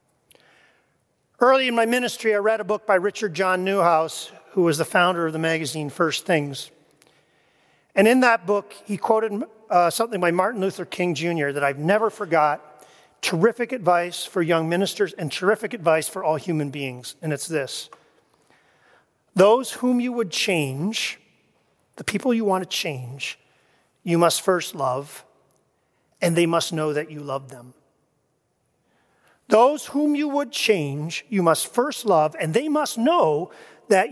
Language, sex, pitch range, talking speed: English, male, 160-230 Hz, 160 wpm